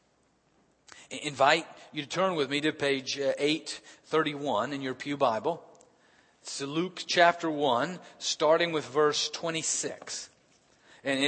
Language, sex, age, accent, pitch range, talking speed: English, male, 40-59, American, 135-165 Hz, 115 wpm